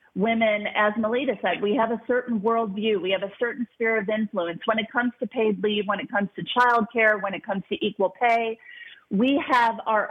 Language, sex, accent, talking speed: English, female, American, 220 wpm